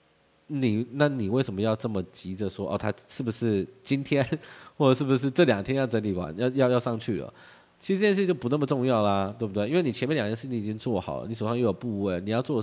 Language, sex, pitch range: Chinese, male, 95-130 Hz